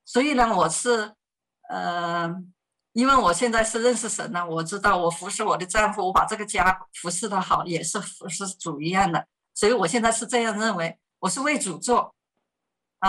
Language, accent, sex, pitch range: Chinese, native, female, 180-235 Hz